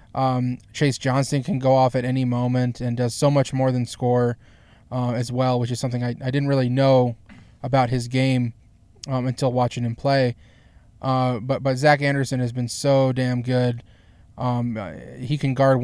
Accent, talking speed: American, 190 wpm